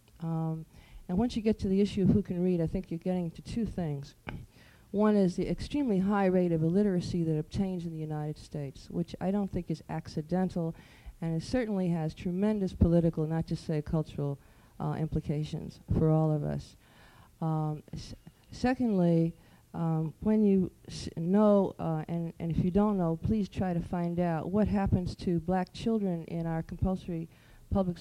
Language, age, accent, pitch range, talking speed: English, 50-69, American, 160-190 Hz, 175 wpm